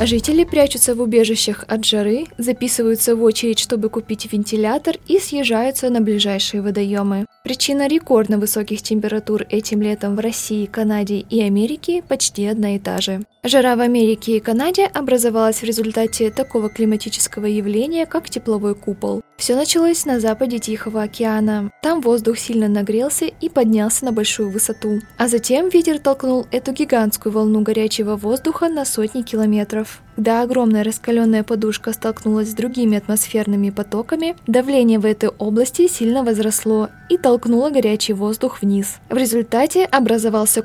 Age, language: 20-39, Russian